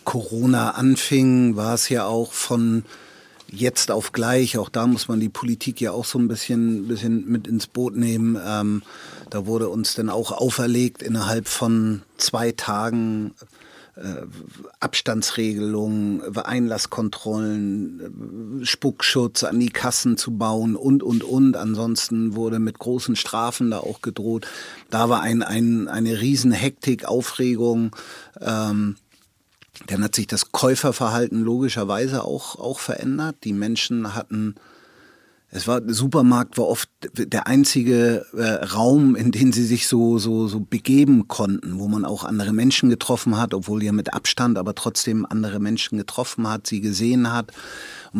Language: German